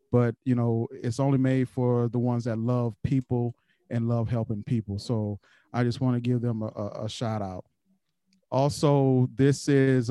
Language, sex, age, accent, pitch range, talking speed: English, male, 40-59, American, 120-135 Hz, 180 wpm